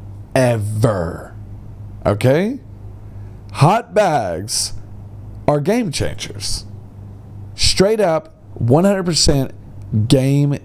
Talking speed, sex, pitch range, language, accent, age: 70 wpm, male, 100-165 Hz, English, American, 40-59